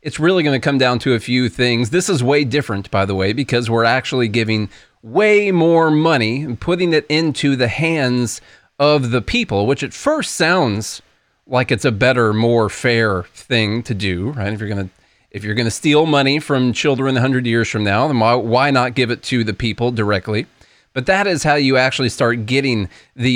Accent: American